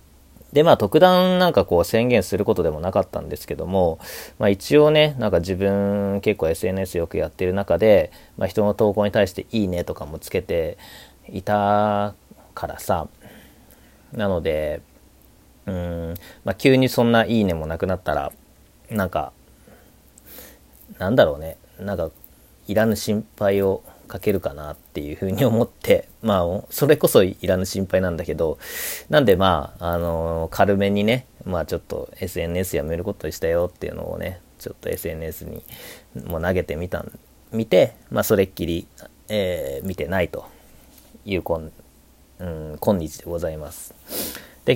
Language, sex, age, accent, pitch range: Japanese, male, 40-59, native, 85-115 Hz